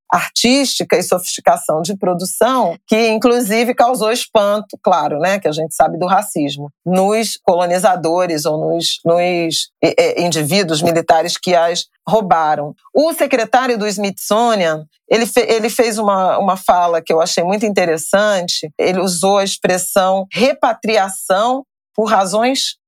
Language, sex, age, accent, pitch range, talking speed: Portuguese, female, 40-59, Brazilian, 170-220 Hz, 130 wpm